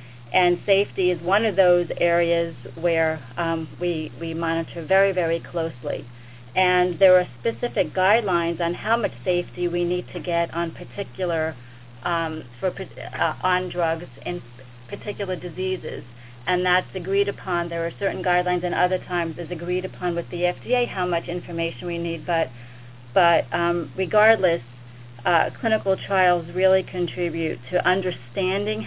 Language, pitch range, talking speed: English, 165-185 Hz, 150 wpm